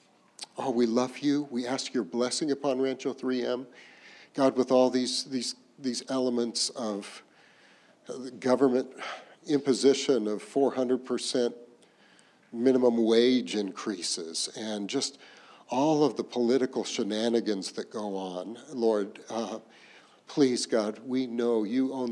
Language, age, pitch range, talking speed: English, 50-69, 115-155 Hz, 120 wpm